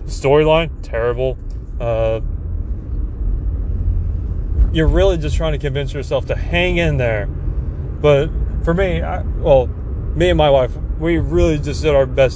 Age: 30-49